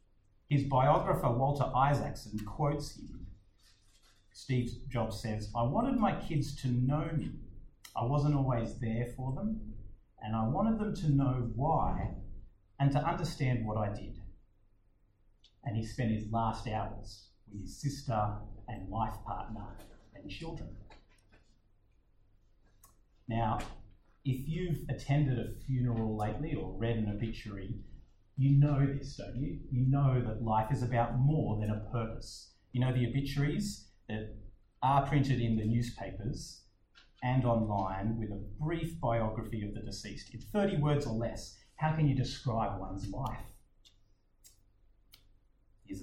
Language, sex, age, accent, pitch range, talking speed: English, male, 30-49, Australian, 105-135 Hz, 140 wpm